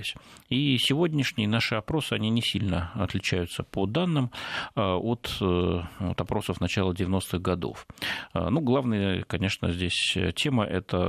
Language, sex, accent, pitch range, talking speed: Russian, male, native, 95-120 Hz, 120 wpm